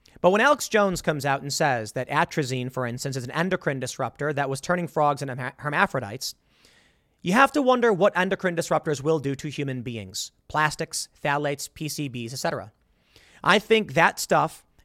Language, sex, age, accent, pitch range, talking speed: English, male, 30-49, American, 130-185 Hz, 170 wpm